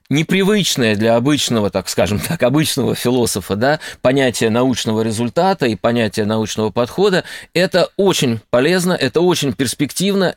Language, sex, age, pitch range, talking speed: Russian, male, 20-39, 115-160 Hz, 120 wpm